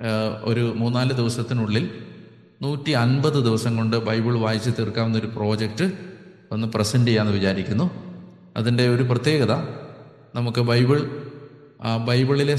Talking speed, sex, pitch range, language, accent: 105 wpm, male, 110-125 Hz, Malayalam, native